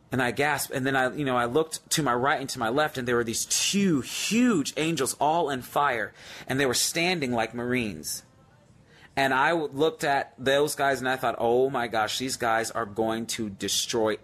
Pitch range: 120-145 Hz